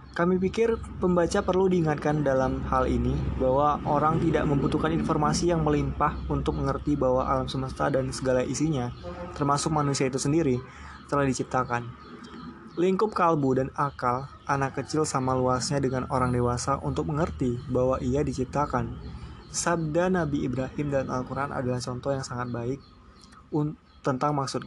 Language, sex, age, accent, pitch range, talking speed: Indonesian, male, 20-39, native, 130-150 Hz, 140 wpm